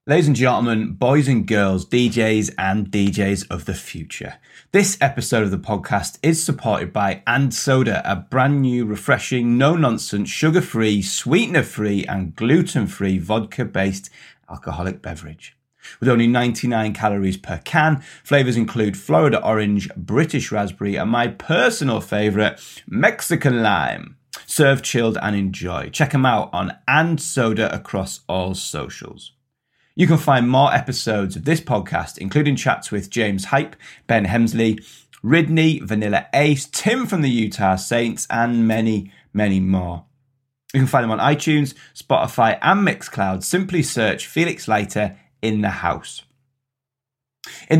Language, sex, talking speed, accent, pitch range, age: English, male, 135 wpm, British, 100-145 Hz, 30-49